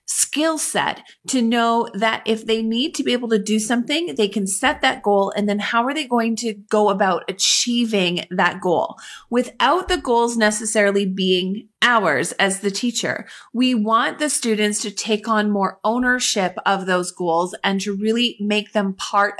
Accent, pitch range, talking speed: American, 195-245 Hz, 180 wpm